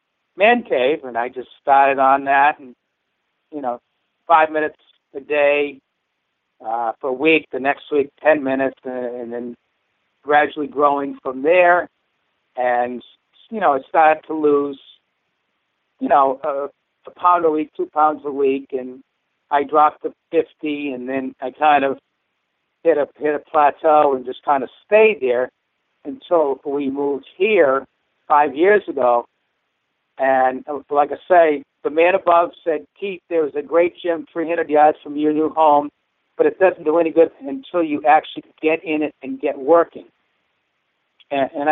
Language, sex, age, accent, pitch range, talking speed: English, male, 60-79, American, 135-155 Hz, 165 wpm